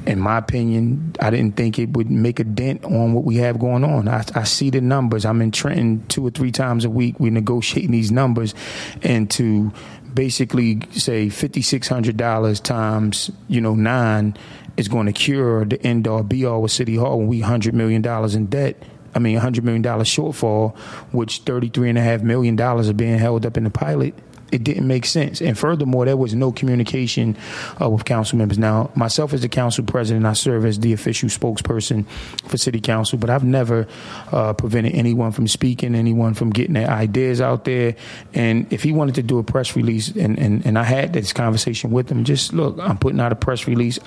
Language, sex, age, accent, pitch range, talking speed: English, male, 30-49, American, 110-125 Hz, 195 wpm